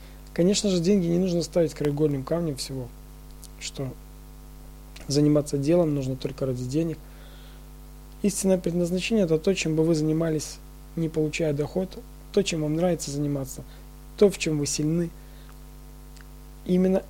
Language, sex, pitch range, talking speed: Russian, male, 135-165 Hz, 135 wpm